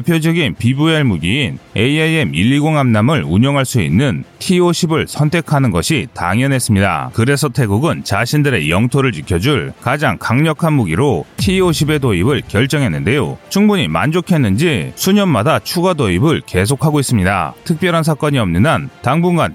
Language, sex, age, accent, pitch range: Korean, male, 30-49, native, 120-160 Hz